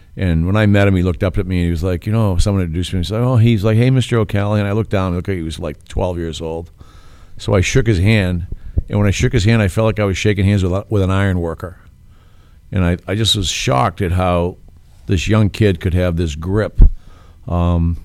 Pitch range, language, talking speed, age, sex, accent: 85-100 Hz, English, 255 wpm, 50-69, male, American